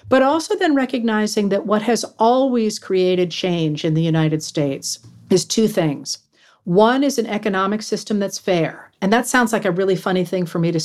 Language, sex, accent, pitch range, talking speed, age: English, female, American, 170-210 Hz, 195 wpm, 50-69